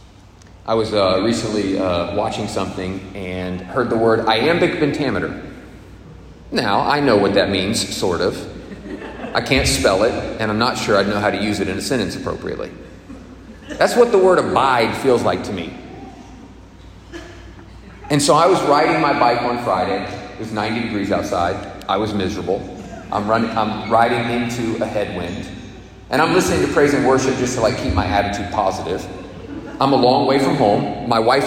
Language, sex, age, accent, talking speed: English, male, 40-59, American, 180 wpm